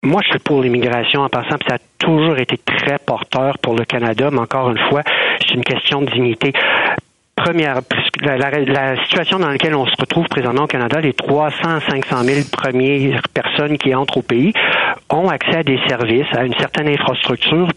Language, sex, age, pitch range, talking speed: French, male, 60-79, 125-155 Hz, 190 wpm